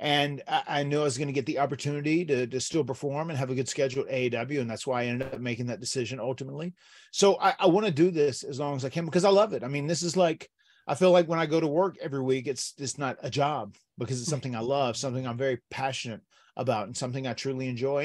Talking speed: 275 wpm